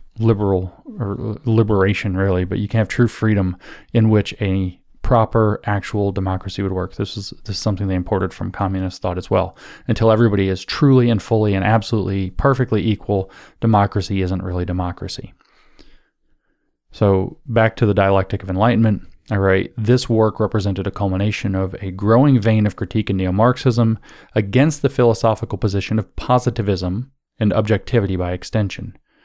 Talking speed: 155 wpm